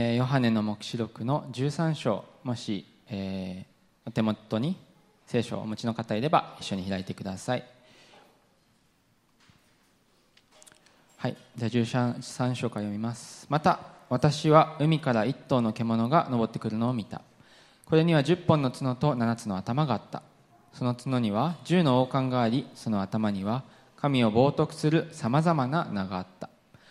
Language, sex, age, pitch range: English, male, 20-39, 115-155 Hz